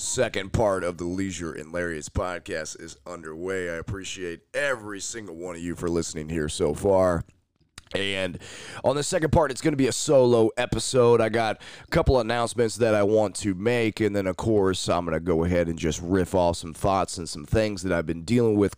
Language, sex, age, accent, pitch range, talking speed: English, male, 30-49, American, 90-120 Hz, 215 wpm